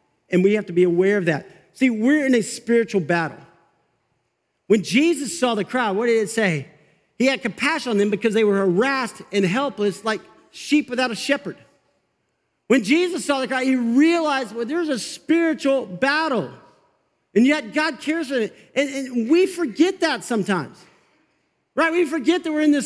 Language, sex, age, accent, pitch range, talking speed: English, male, 50-69, American, 205-275 Hz, 185 wpm